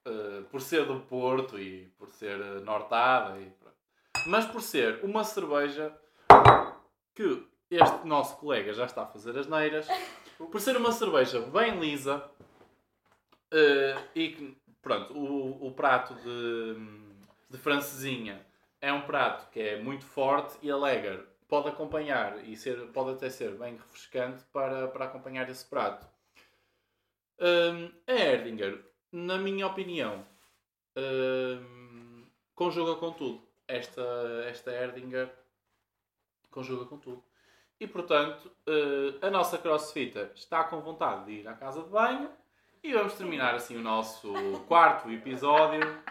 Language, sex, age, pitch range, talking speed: Portuguese, male, 20-39, 120-165 Hz, 135 wpm